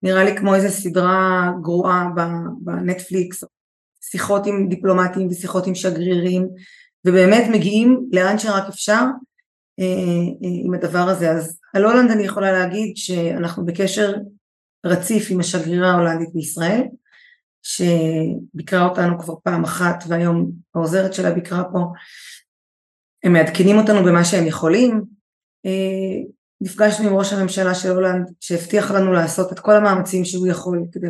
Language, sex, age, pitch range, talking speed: Hebrew, female, 20-39, 175-200 Hz, 130 wpm